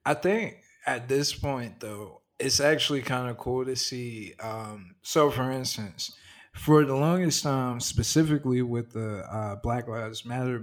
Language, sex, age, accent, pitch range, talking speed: English, male, 20-39, American, 115-135 Hz, 160 wpm